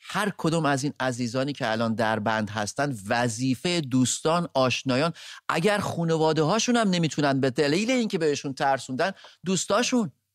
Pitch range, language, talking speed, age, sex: 120-160 Hz, English, 145 wpm, 30-49, male